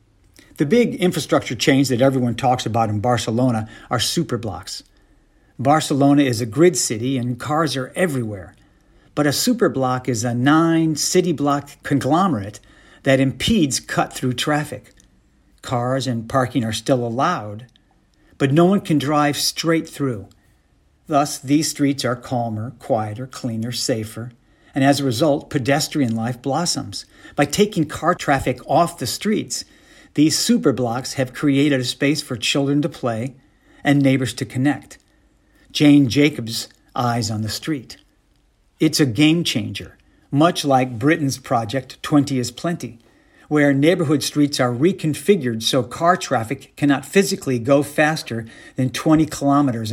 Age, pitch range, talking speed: 50-69, 120-150 Hz, 140 wpm